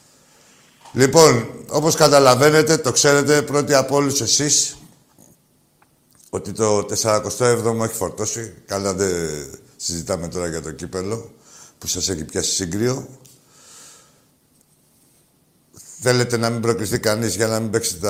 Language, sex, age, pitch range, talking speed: Greek, male, 60-79, 110-145 Hz, 115 wpm